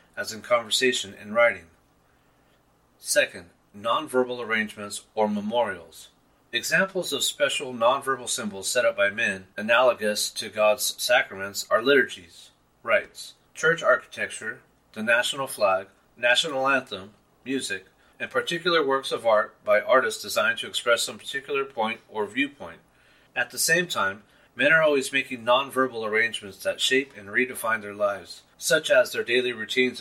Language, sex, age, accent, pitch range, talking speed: English, male, 30-49, American, 105-145 Hz, 140 wpm